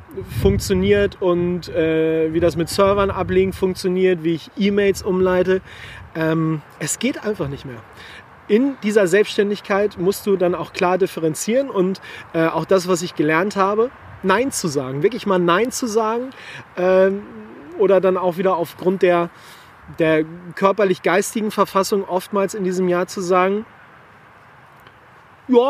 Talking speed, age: 140 wpm, 30-49